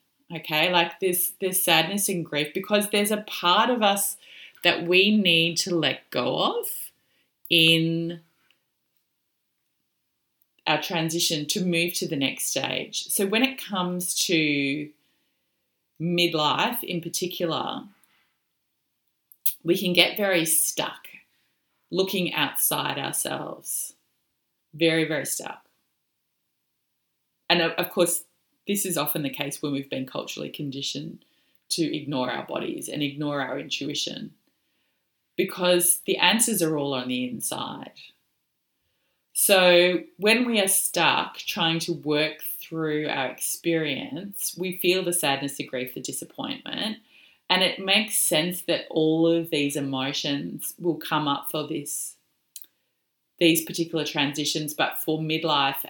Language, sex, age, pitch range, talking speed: English, female, 30-49, 155-185 Hz, 125 wpm